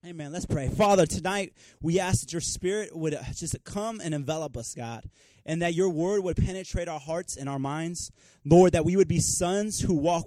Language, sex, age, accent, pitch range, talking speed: English, male, 30-49, American, 140-185 Hz, 210 wpm